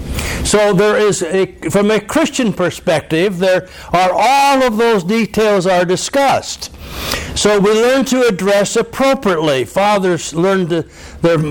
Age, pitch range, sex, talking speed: 60-79, 130-205 Hz, male, 135 wpm